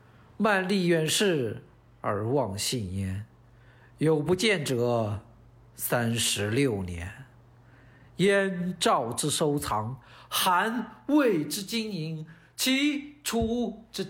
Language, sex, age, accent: Chinese, male, 50-69, native